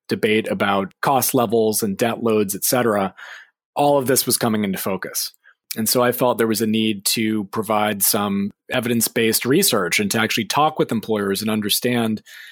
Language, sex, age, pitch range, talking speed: English, male, 30-49, 105-125 Hz, 175 wpm